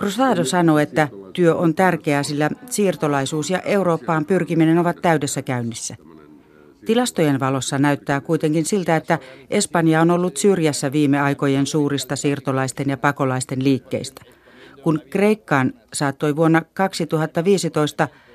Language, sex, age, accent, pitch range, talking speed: Finnish, female, 40-59, native, 145-170 Hz, 120 wpm